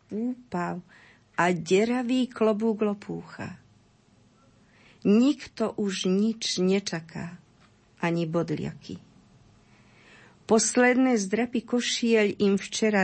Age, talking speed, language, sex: 50-69, 75 wpm, Slovak, female